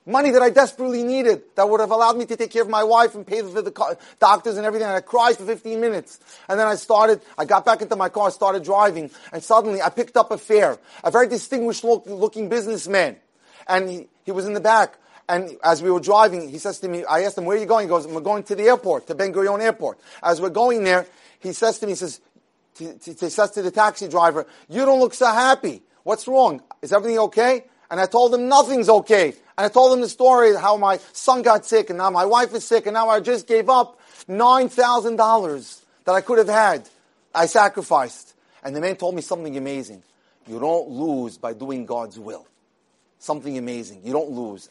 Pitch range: 170-230 Hz